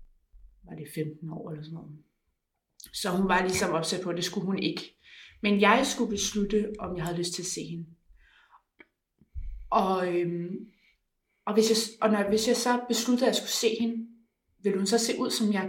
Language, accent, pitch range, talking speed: Danish, native, 175-225 Hz, 205 wpm